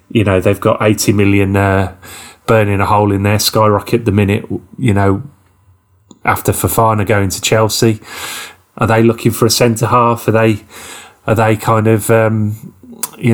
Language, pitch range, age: English, 100-120 Hz, 30-49